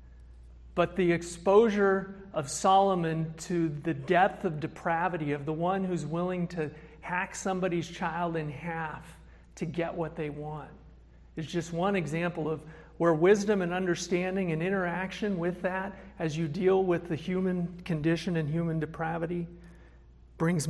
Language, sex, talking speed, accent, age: English, male, 145 wpm, American, 50-69